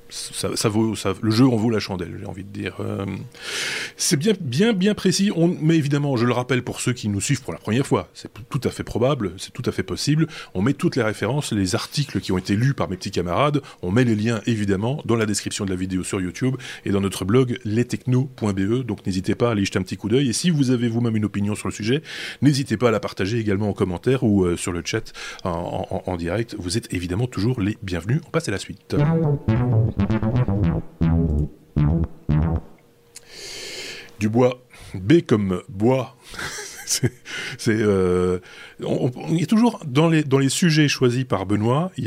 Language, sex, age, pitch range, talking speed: French, male, 30-49, 100-135 Hz, 210 wpm